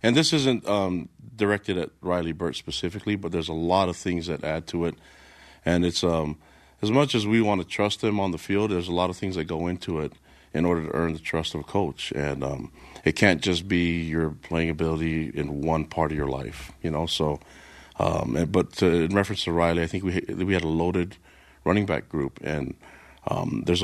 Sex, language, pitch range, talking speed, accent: male, English, 80-90 Hz, 220 wpm, American